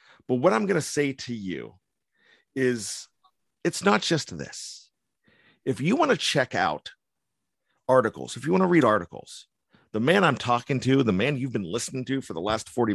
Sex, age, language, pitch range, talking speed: male, 40-59, English, 105-140 Hz, 190 wpm